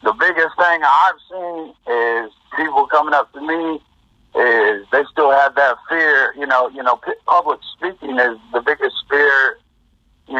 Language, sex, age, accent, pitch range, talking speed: English, male, 50-69, American, 125-160 Hz, 160 wpm